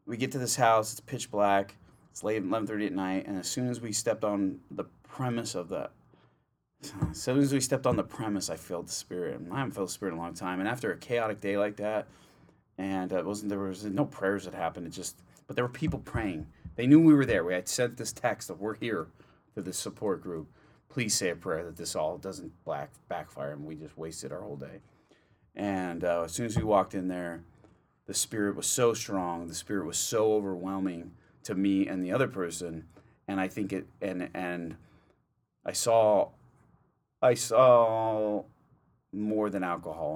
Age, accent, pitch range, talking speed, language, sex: 30-49, American, 90-110 Hz, 215 wpm, English, male